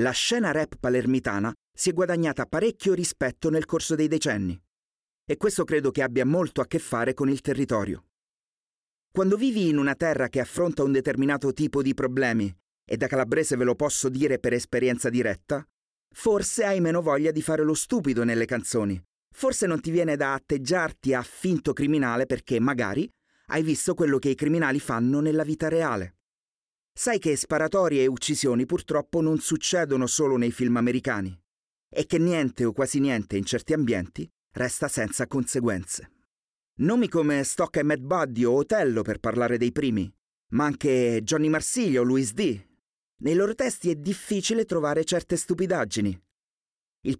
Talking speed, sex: 165 wpm, male